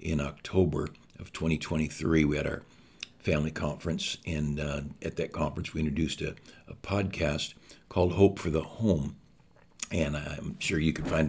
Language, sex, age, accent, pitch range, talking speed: English, male, 60-79, American, 75-95 Hz, 160 wpm